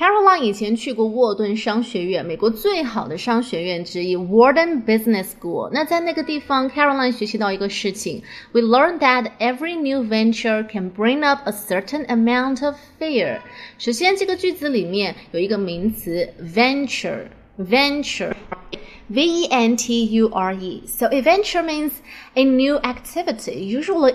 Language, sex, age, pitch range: Chinese, female, 20-39, 210-285 Hz